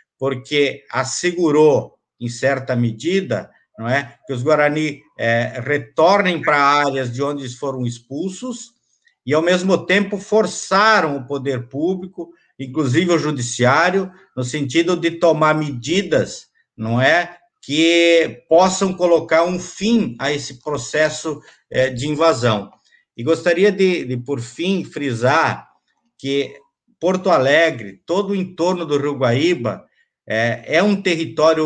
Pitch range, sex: 130-175 Hz, male